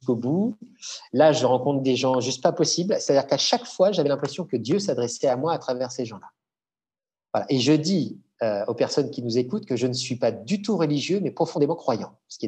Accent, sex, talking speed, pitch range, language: French, male, 230 wpm, 125-180 Hz, French